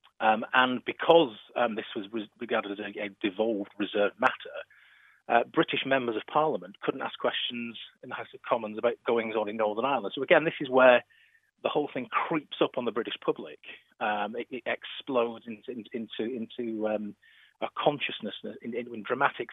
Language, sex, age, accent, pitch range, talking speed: English, male, 40-59, British, 105-130 Hz, 180 wpm